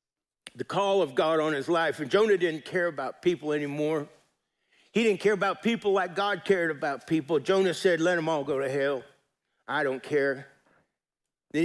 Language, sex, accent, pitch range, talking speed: English, male, American, 135-165 Hz, 185 wpm